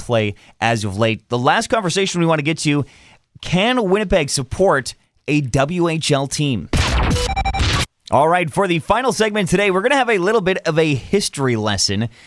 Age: 30-49